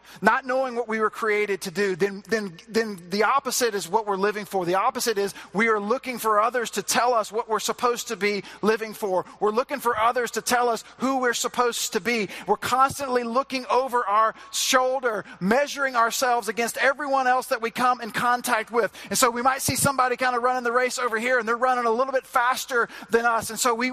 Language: English